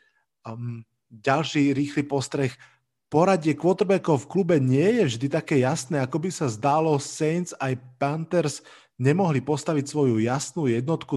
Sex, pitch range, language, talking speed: male, 130-160 Hz, Slovak, 135 wpm